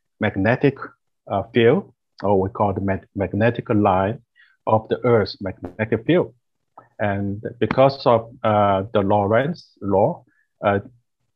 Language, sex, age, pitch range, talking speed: English, male, 50-69, 105-125 Hz, 120 wpm